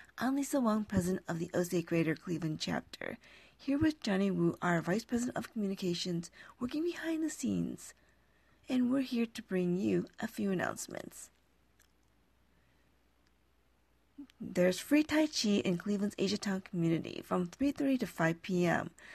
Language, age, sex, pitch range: English, 40-59, female, 170-265 Hz